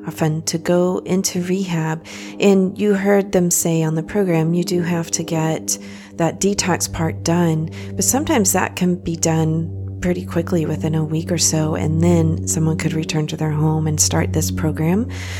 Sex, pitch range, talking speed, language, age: female, 115-180 Hz, 185 wpm, English, 40-59